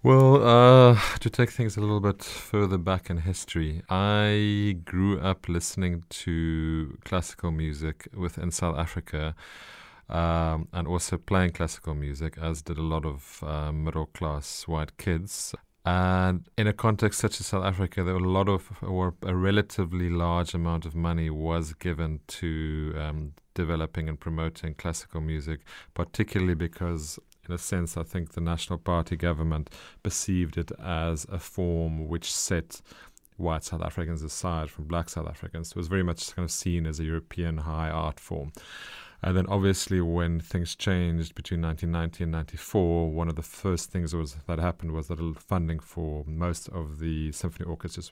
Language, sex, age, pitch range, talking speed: English, male, 30-49, 80-90 Hz, 165 wpm